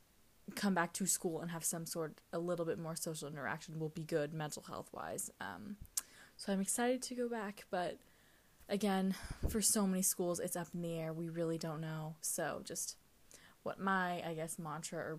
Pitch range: 165-205 Hz